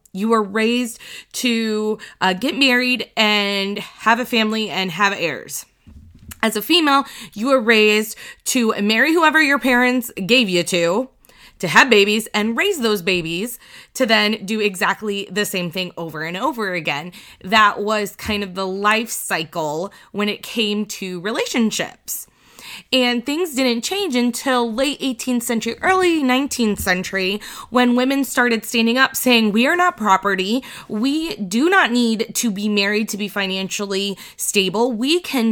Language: English